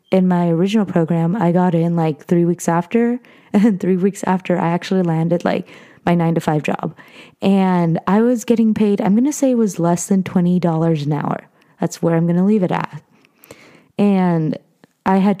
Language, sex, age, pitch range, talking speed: English, female, 20-39, 170-205 Hz, 205 wpm